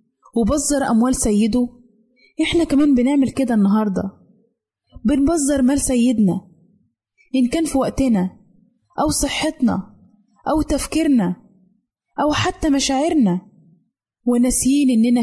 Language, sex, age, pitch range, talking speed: Arabic, female, 20-39, 200-275 Hz, 95 wpm